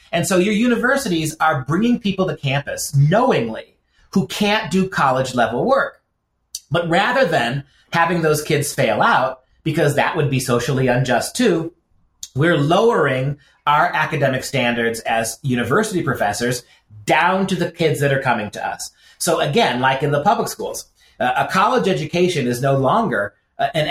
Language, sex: English, male